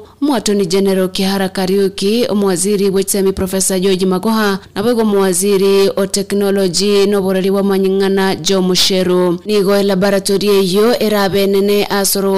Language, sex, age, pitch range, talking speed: English, female, 20-39, 195-205 Hz, 125 wpm